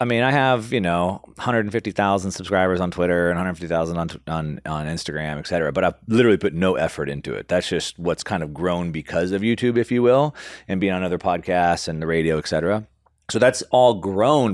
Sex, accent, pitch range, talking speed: male, American, 85-115 Hz, 210 wpm